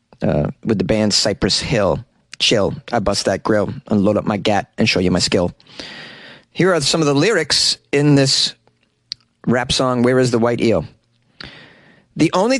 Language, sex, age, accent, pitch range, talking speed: English, male, 30-49, American, 115-160 Hz, 180 wpm